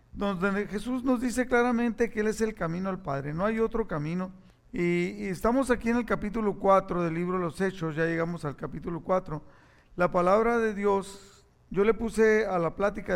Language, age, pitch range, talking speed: Spanish, 50-69, 165-210 Hz, 200 wpm